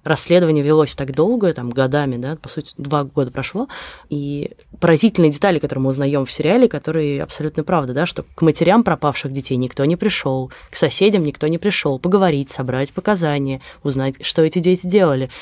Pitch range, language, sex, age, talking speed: 135-170 Hz, Russian, female, 20-39, 175 wpm